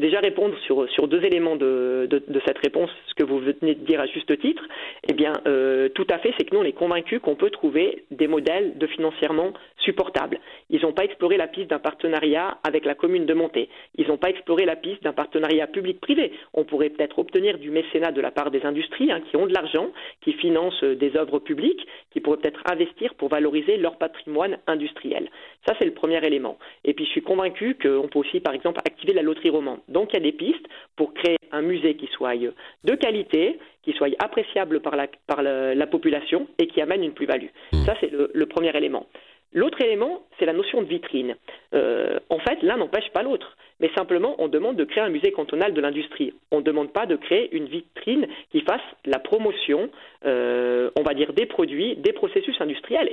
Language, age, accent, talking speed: French, 40-59, French, 215 wpm